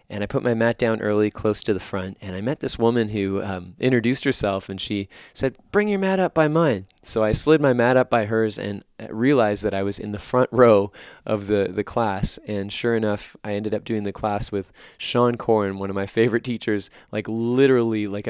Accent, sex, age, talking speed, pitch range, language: American, male, 20-39, 235 wpm, 100-120 Hz, English